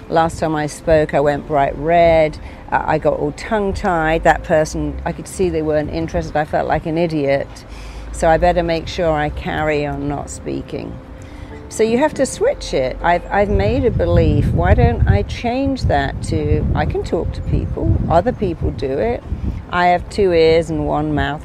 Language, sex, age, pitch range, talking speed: English, female, 50-69, 150-195 Hz, 190 wpm